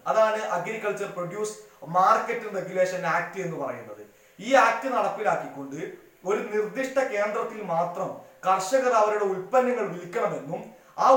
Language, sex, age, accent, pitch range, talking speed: Malayalam, male, 20-39, native, 170-225 Hz, 110 wpm